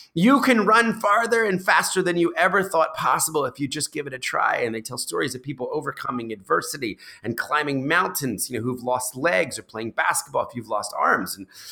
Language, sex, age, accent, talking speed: English, male, 30-49, American, 215 wpm